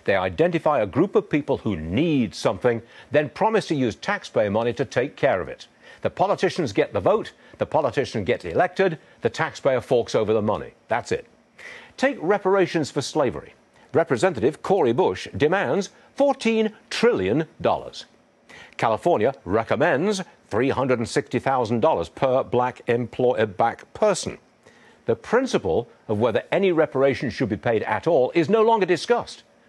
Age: 60-79